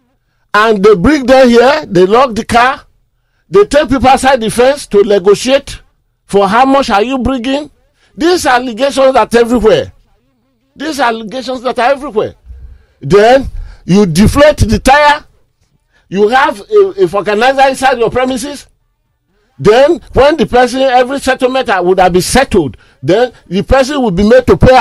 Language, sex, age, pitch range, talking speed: English, male, 50-69, 175-265 Hz, 150 wpm